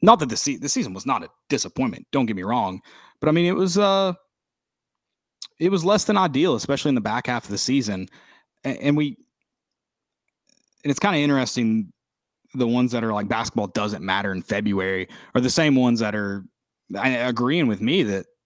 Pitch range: 100-130 Hz